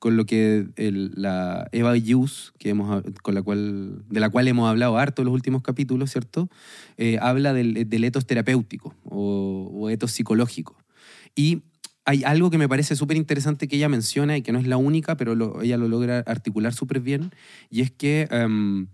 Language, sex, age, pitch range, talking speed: Spanish, male, 20-39, 105-140 Hz, 195 wpm